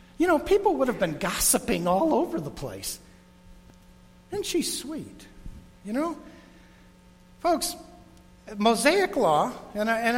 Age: 50-69